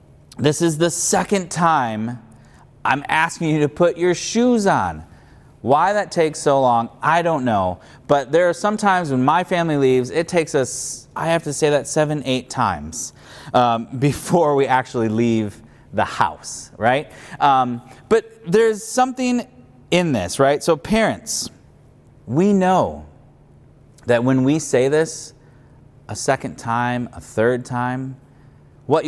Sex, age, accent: male, 30-49, American